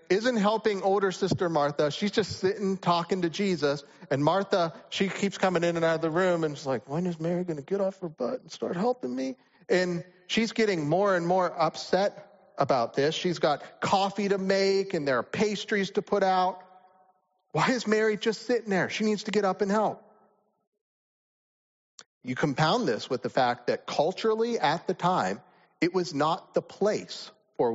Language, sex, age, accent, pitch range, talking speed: English, male, 40-59, American, 150-210 Hz, 190 wpm